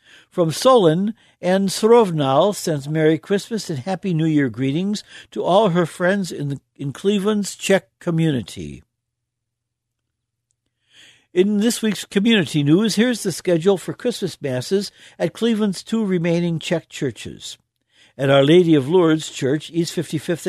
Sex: male